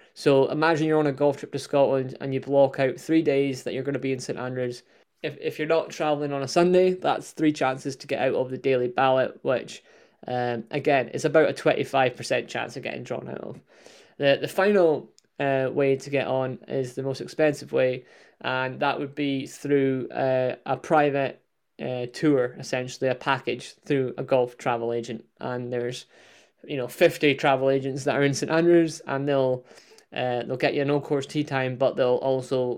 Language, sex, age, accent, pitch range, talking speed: English, male, 20-39, British, 130-150 Hz, 205 wpm